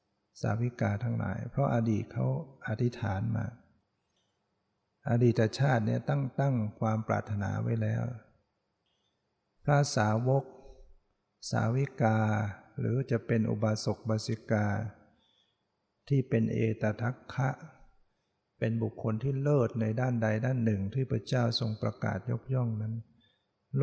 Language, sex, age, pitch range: Thai, male, 60-79, 110-125 Hz